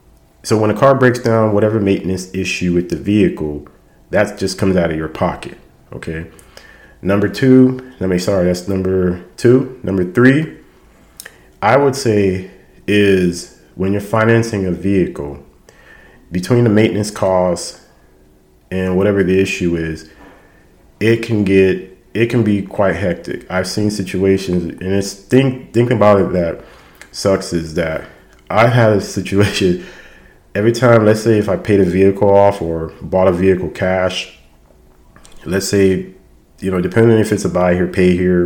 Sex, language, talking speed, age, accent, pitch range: male, English, 155 wpm, 40-59, American, 90-105 Hz